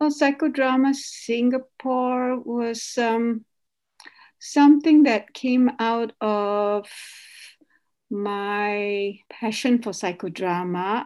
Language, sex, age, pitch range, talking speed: English, female, 60-79, 205-235 Hz, 70 wpm